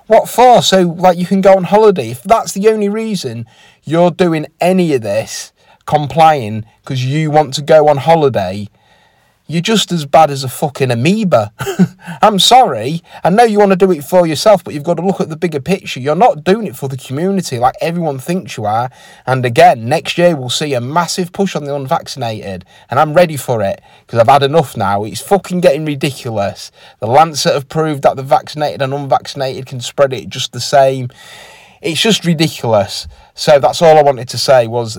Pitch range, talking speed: 120-170 Hz, 205 wpm